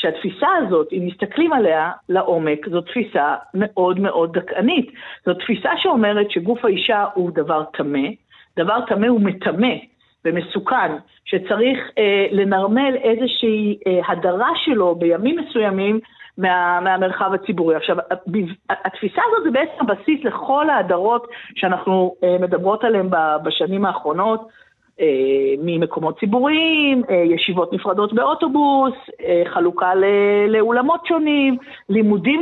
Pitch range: 185-255 Hz